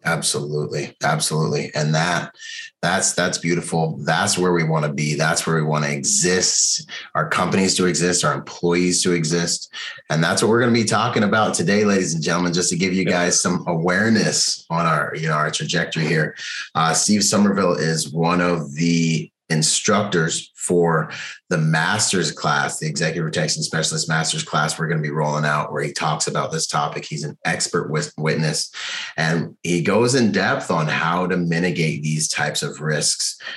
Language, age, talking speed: English, 30-49, 180 wpm